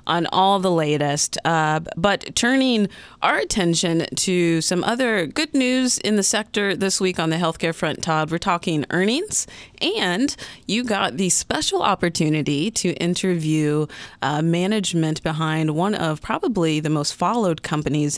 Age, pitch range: 30-49, 155-195 Hz